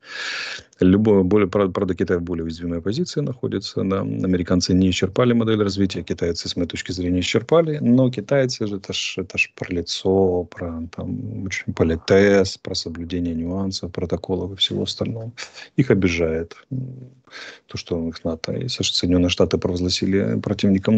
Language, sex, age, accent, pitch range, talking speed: Russian, male, 30-49, native, 90-115 Hz, 135 wpm